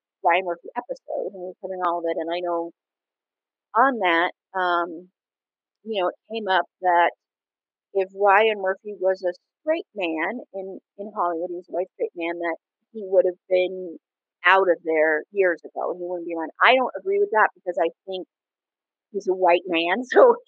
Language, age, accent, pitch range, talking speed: English, 40-59, American, 165-200 Hz, 190 wpm